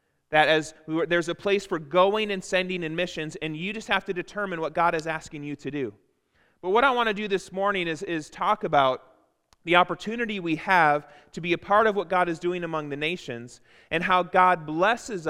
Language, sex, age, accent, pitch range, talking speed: English, male, 30-49, American, 160-200 Hz, 230 wpm